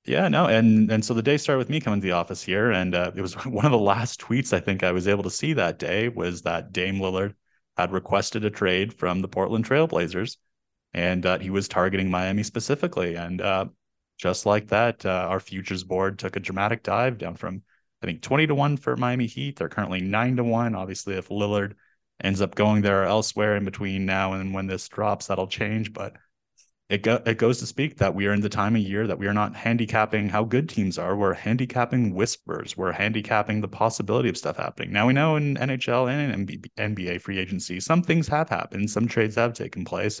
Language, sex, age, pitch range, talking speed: English, male, 20-39, 95-115 Hz, 220 wpm